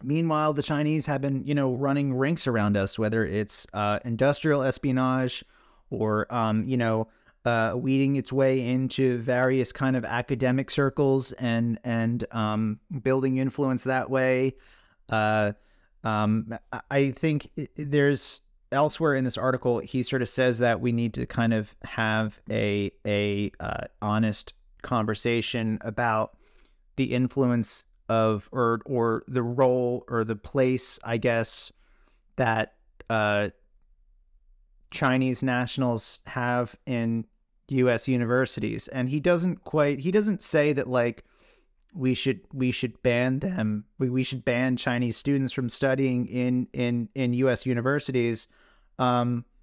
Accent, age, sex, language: American, 30-49, male, English